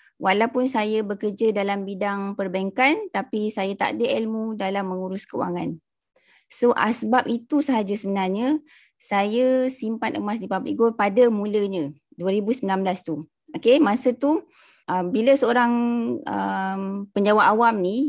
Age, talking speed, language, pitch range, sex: 20-39, 130 wpm, Malay, 195-240 Hz, female